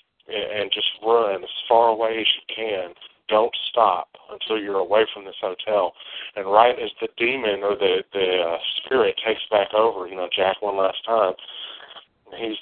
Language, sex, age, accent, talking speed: English, male, 40-59, American, 175 wpm